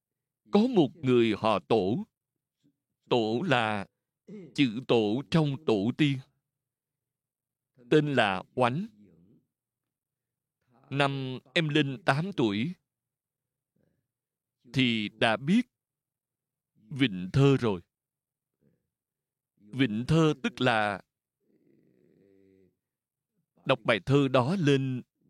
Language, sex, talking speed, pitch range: Vietnamese, male, 85 wpm, 120-150 Hz